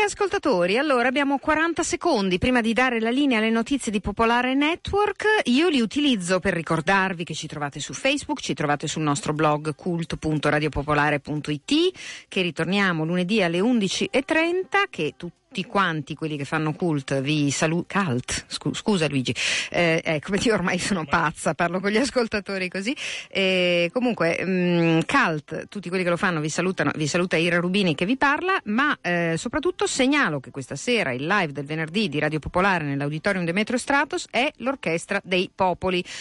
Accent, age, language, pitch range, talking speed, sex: native, 50-69, Italian, 160-255 Hz, 165 wpm, female